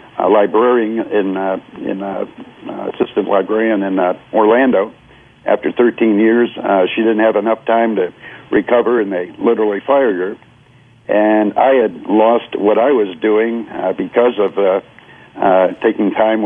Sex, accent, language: male, American, English